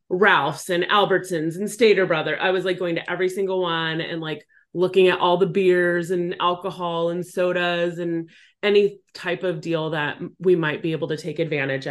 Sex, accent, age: female, American, 30-49